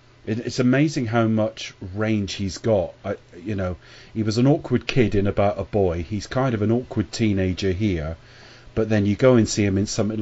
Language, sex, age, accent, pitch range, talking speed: English, male, 30-49, British, 95-120 Hz, 205 wpm